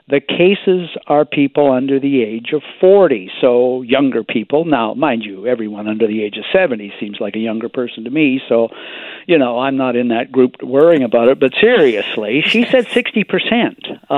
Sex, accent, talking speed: male, American, 185 wpm